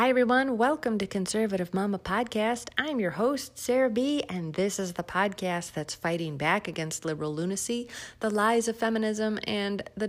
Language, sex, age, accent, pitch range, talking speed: English, female, 30-49, American, 170-220 Hz, 170 wpm